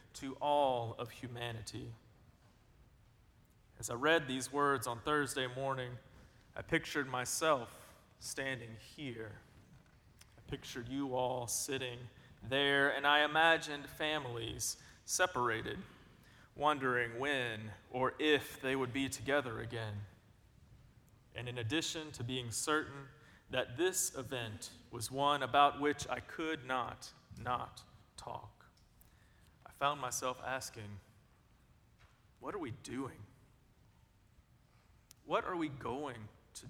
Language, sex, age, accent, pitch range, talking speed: English, male, 30-49, American, 115-155 Hz, 110 wpm